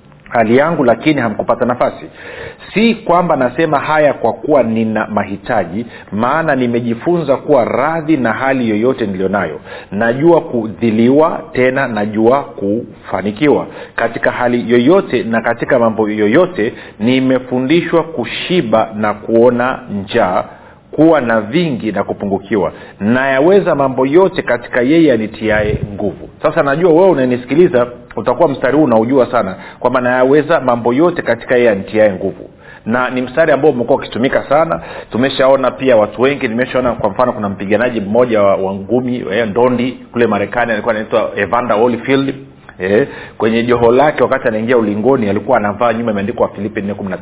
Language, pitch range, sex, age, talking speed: Swahili, 110-135 Hz, male, 50-69, 140 wpm